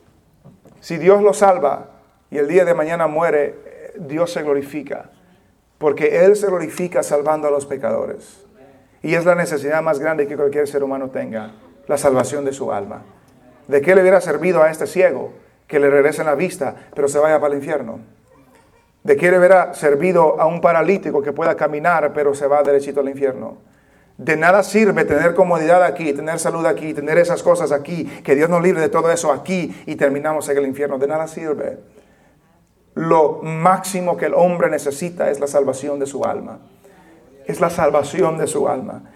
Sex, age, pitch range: male, 40-59, 145-185 Hz